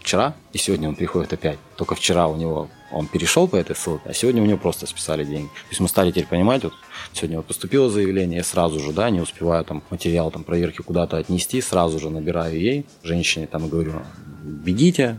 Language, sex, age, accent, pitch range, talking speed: Russian, male, 20-39, native, 80-110 Hz, 215 wpm